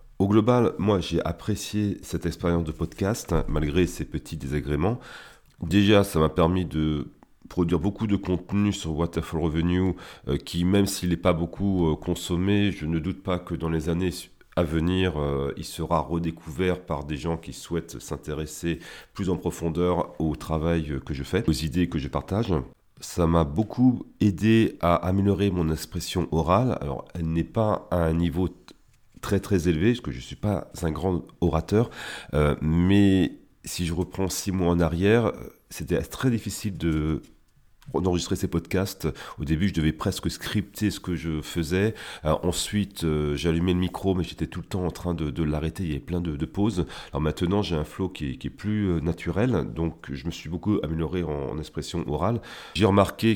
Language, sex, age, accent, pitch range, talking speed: French, male, 40-59, French, 80-95 Hz, 190 wpm